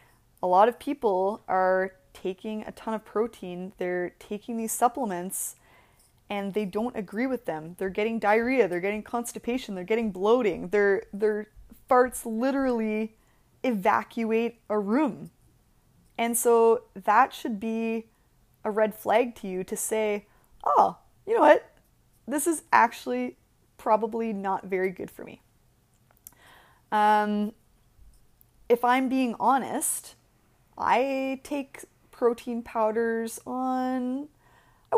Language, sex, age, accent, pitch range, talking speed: English, female, 20-39, American, 210-240 Hz, 125 wpm